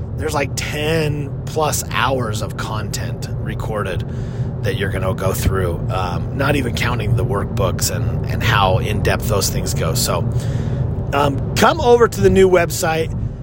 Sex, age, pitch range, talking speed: male, 30-49, 115-140 Hz, 160 wpm